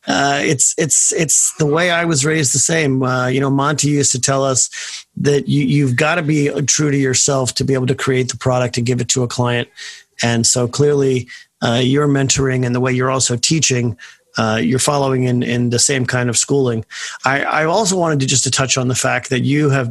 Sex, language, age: male, English, 40-59